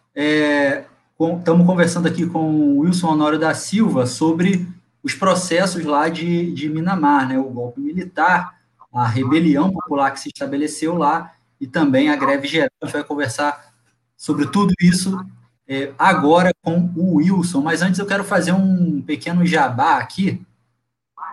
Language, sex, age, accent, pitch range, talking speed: Portuguese, male, 20-39, Brazilian, 135-175 Hz, 145 wpm